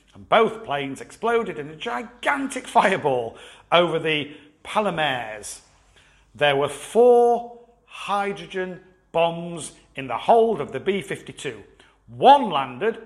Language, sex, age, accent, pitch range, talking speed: English, male, 50-69, British, 140-225 Hz, 110 wpm